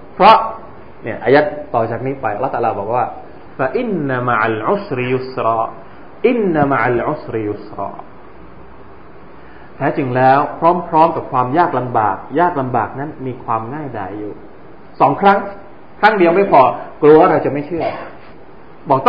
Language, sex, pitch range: Thai, male, 130-195 Hz